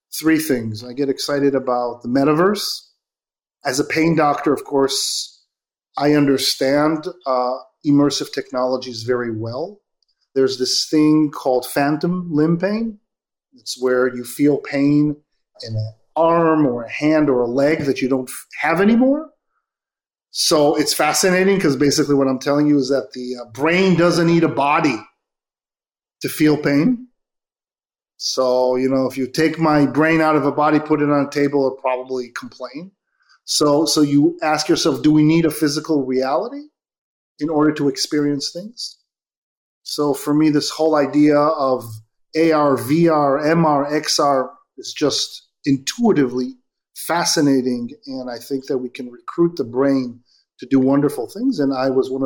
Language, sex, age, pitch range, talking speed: English, male, 40-59, 130-160 Hz, 155 wpm